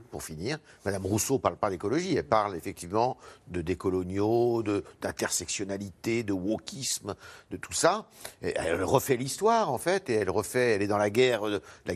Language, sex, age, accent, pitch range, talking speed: French, male, 60-79, French, 105-160 Hz, 175 wpm